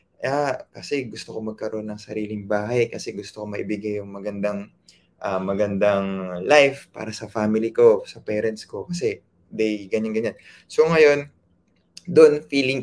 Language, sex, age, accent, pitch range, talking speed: Filipino, male, 20-39, native, 110-170 Hz, 145 wpm